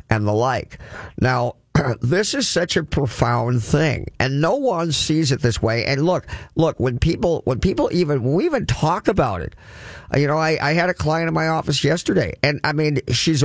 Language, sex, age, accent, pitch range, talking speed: English, male, 50-69, American, 125-175 Hz, 205 wpm